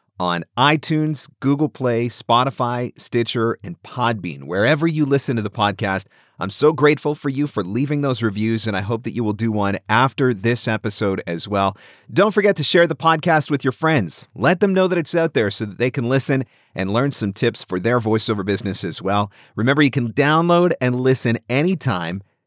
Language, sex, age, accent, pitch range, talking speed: English, male, 40-59, American, 110-150 Hz, 200 wpm